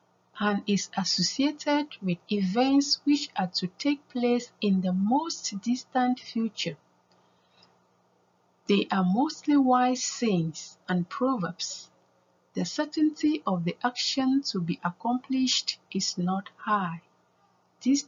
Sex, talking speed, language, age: female, 115 wpm, English, 50-69